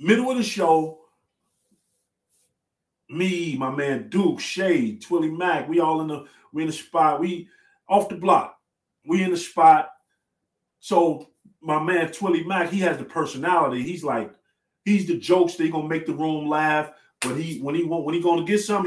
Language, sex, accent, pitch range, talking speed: English, male, American, 155-195 Hz, 180 wpm